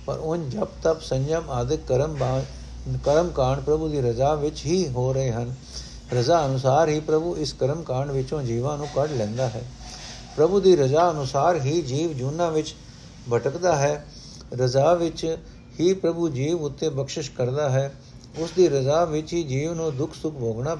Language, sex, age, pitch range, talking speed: Punjabi, male, 60-79, 130-160 Hz, 165 wpm